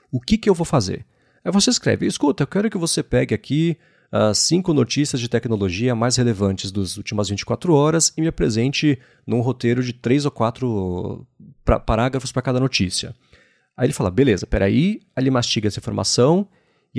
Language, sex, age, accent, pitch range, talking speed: Portuguese, male, 30-49, Brazilian, 110-145 Hz, 180 wpm